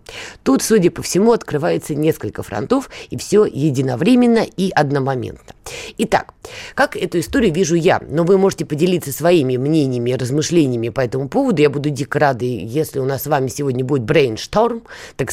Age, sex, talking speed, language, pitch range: 20-39, female, 160 wpm, Russian, 135-190 Hz